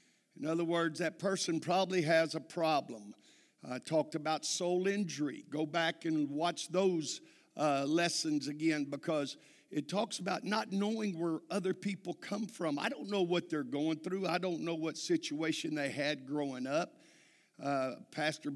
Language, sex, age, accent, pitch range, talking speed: English, male, 50-69, American, 150-185 Hz, 165 wpm